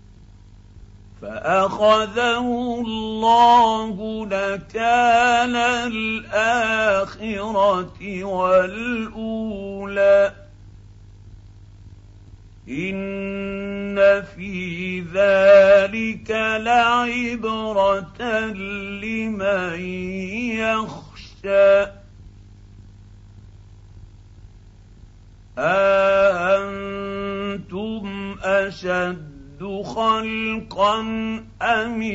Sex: male